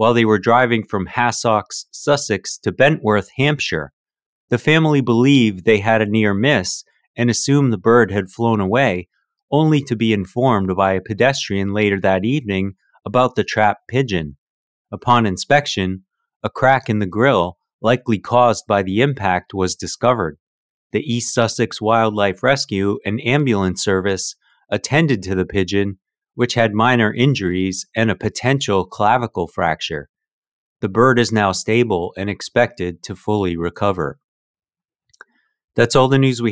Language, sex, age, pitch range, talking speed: English, male, 30-49, 100-120 Hz, 145 wpm